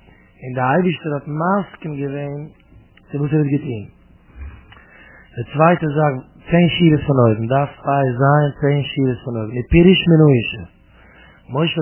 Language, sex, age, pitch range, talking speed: English, male, 30-49, 130-160 Hz, 120 wpm